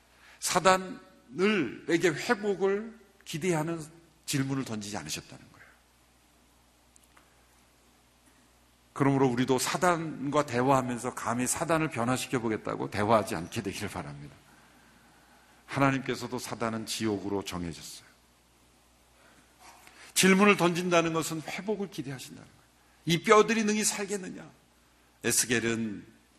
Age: 50-69